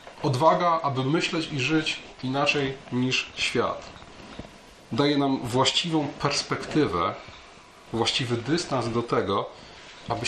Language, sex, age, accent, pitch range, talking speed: Polish, male, 30-49, native, 115-145 Hz, 100 wpm